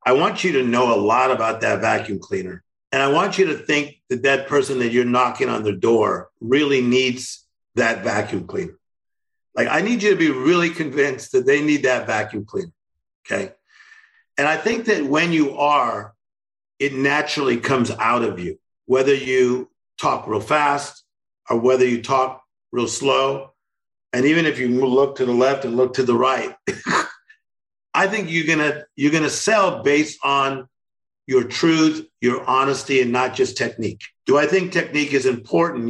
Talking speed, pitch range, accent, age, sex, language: 180 wpm, 125-160 Hz, American, 50-69, male, English